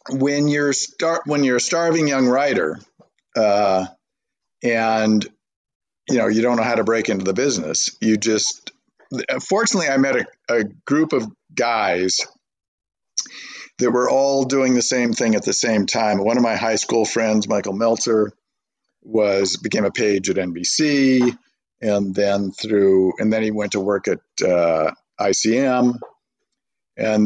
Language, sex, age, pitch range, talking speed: English, male, 50-69, 100-125 Hz, 155 wpm